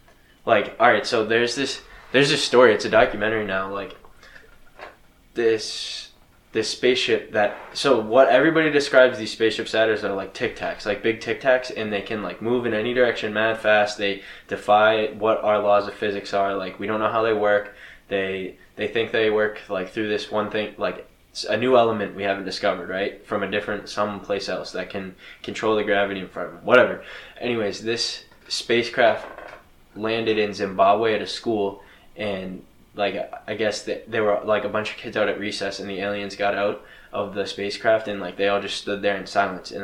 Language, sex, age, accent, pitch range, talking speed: English, male, 10-29, American, 100-110 Hz, 200 wpm